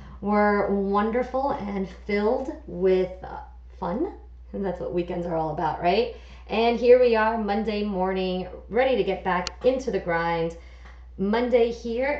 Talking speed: 145 wpm